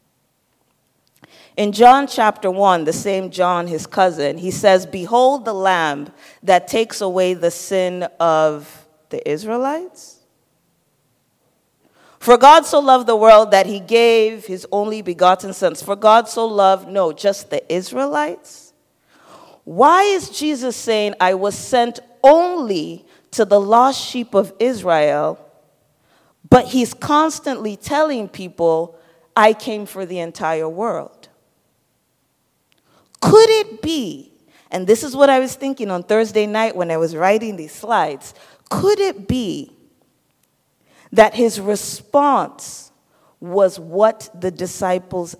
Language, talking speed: English, 130 wpm